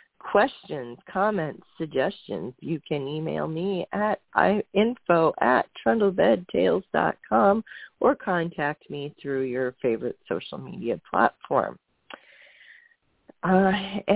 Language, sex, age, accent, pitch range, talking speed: English, female, 40-59, American, 145-205 Hz, 90 wpm